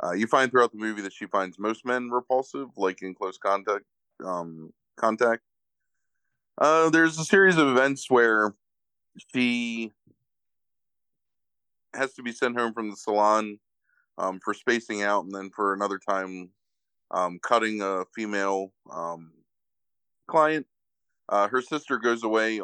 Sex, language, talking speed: male, English, 145 wpm